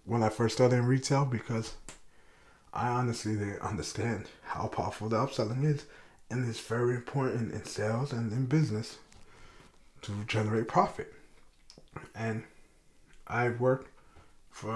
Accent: American